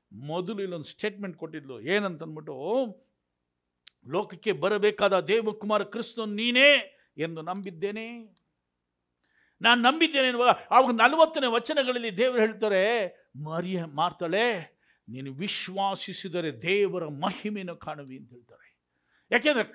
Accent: native